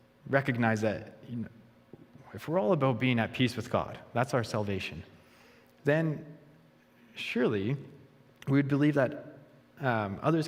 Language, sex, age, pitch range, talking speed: English, male, 30-49, 100-140 Hz, 135 wpm